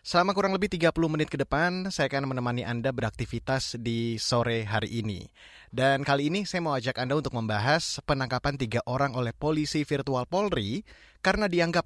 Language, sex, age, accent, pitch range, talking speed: Indonesian, male, 20-39, native, 125-165 Hz, 170 wpm